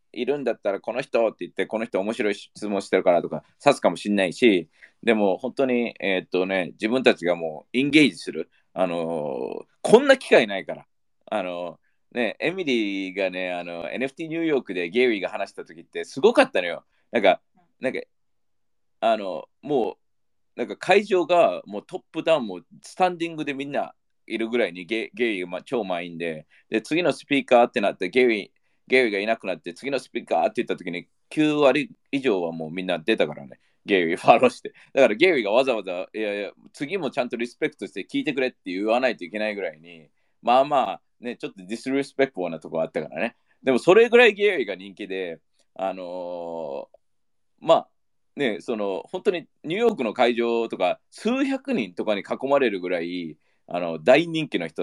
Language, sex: Japanese, male